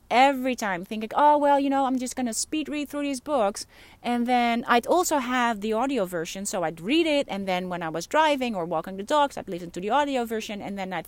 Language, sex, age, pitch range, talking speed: Dutch, female, 30-49, 200-270 Hz, 250 wpm